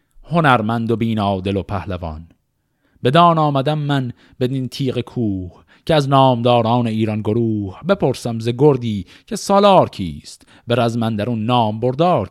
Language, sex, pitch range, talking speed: Persian, male, 105-140 Hz, 135 wpm